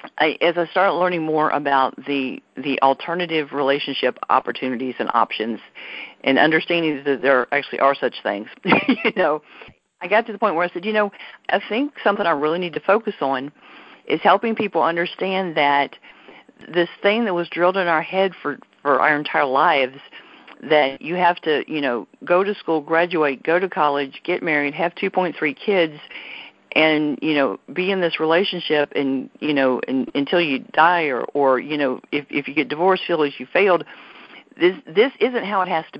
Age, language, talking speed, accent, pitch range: 50-69, English, 195 wpm, American, 150-205 Hz